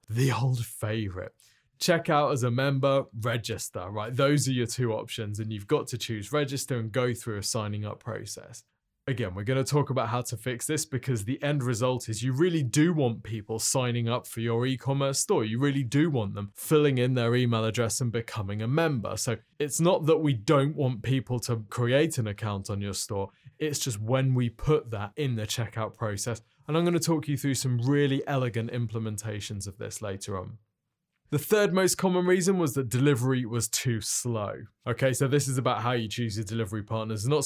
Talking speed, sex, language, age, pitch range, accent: 210 wpm, male, English, 20-39, 110-140 Hz, British